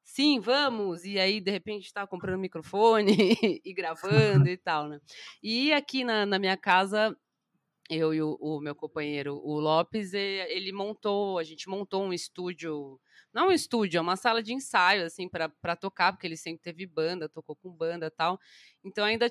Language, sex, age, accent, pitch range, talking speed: Portuguese, female, 20-39, Brazilian, 165-220 Hz, 185 wpm